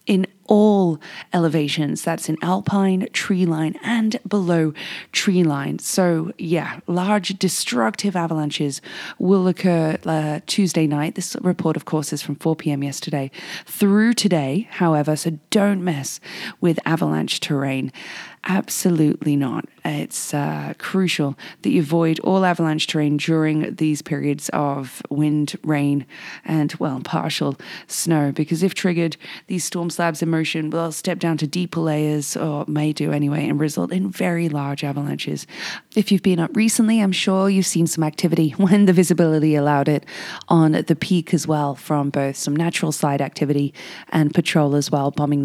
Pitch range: 150-185 Hz